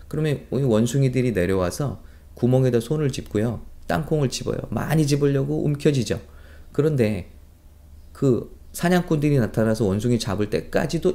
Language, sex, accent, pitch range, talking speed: English, male, Korean, 90-145 Hz, 95 wpm